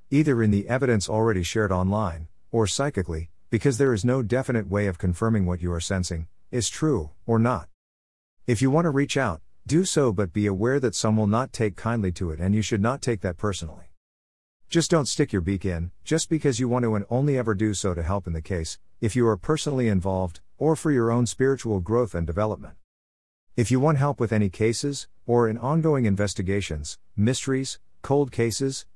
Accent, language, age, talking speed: American, English, 50-69, 205 wpm